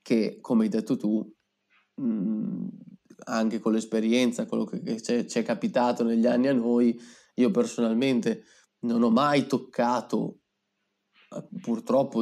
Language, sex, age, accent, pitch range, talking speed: Italian, male, 20-39, native, 110-130 Hz, 120 wpm